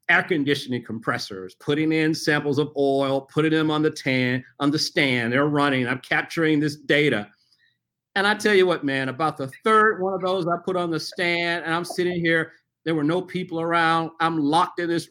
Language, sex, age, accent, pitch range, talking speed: English, male, 40-59, American, 145-195 Hz, 200 wpm